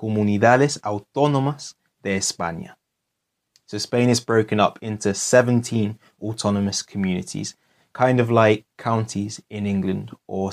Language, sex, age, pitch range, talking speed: Spanish, male, 20-39, 100-125 Hz, 115 wpm